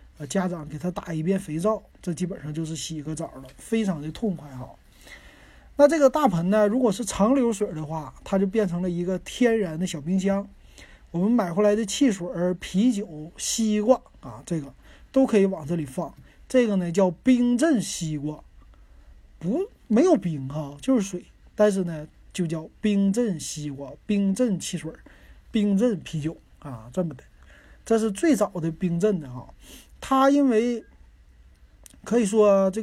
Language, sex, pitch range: Chinese, male, 155-210 Hz